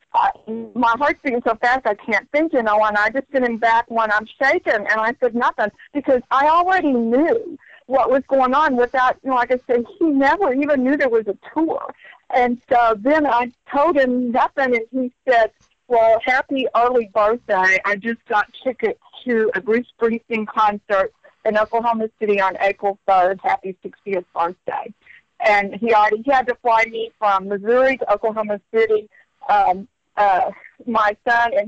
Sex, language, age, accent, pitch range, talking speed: female, English, 50-69, American, 205-260 Hz, 180 wpm